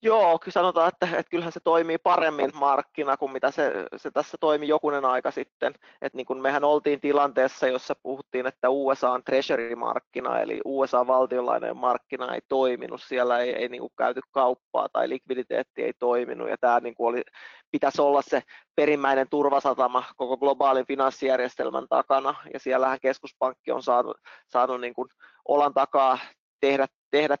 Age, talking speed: 20-39, 160 wpm